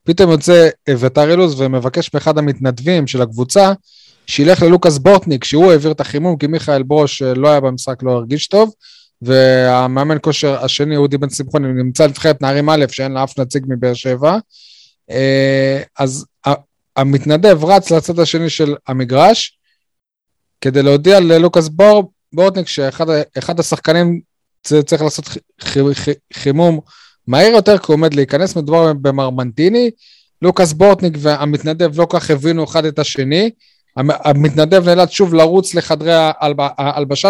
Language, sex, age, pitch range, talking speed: Hebrew, male, 20-39, 140-185 Hz, 130 wpm